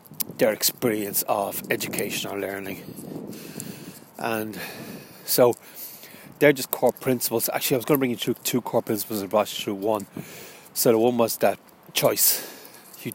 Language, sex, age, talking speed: English, male, 30-49, 155 wpm